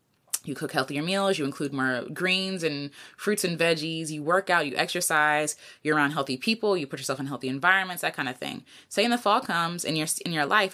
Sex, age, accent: female, 20-39, American